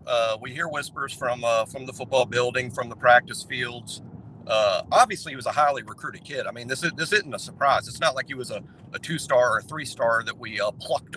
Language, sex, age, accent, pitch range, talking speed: English, male, 50-69, American, 125-155 Hz, 240 wpm